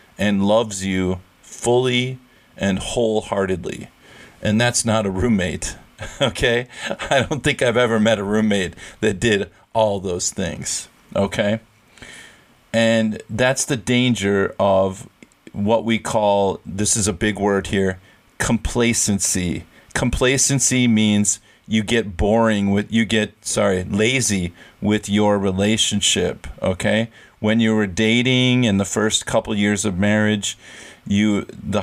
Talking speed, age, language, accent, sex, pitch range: 130 wpm, 40-59, English, American, male, 100-120 Hz